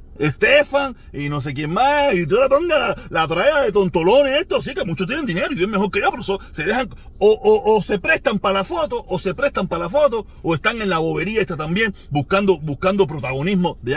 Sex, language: male, Spanish